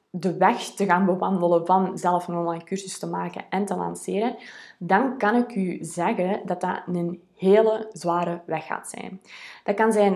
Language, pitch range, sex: Dutch, 175-210 Hz, female